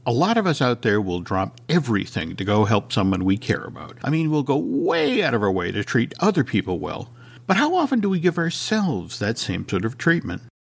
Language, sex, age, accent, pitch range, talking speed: English, male, 50-69, American, 110-180 Hz, 235 wpm